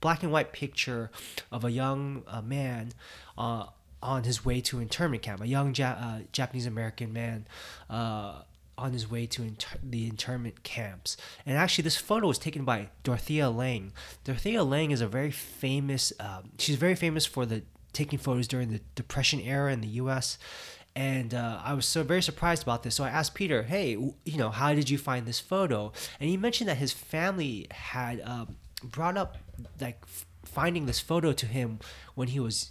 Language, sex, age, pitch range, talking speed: English, male, 20-39, 115-140 Hz, 195 wpm